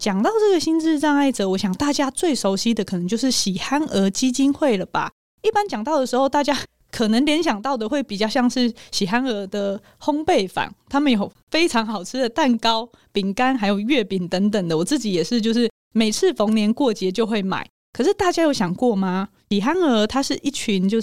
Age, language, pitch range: 20-39, Chinese, 205-275 Hz